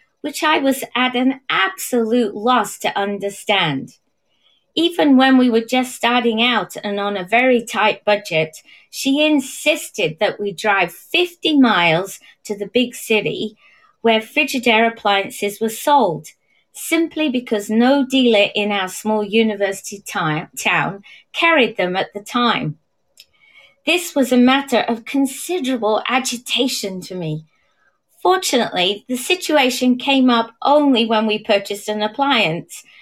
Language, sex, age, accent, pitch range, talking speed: English, female, 30-49, British, 210-270 Hz, 130 wpm